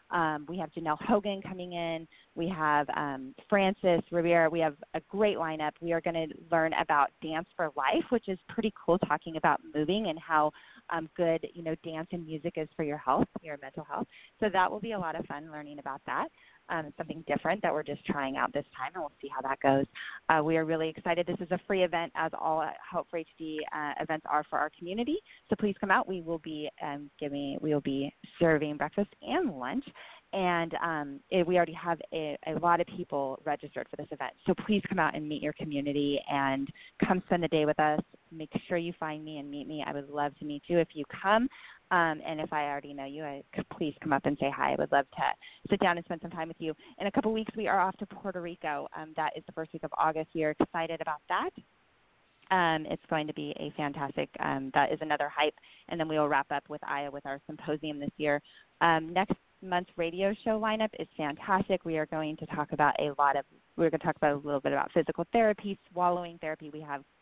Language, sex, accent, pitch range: English, female, American, 150-180 Hz